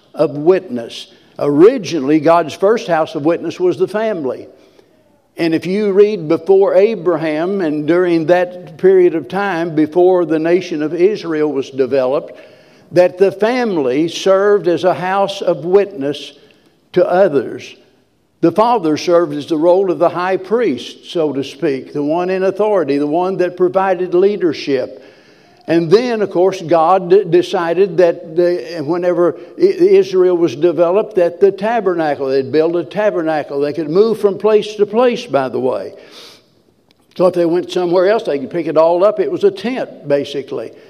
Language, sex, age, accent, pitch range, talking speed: English, male, 60-79, American, 165-210 Hz, 160 wpm